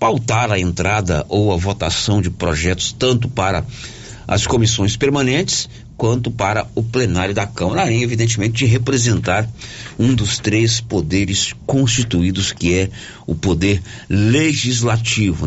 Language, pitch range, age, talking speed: Portuguese, 95-125 Hz, 50-69, 125 wpm